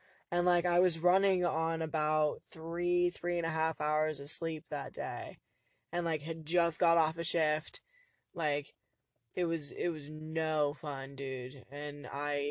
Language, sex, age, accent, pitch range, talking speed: English, female, 20-39, American, 145-175 Hz, 175 wpm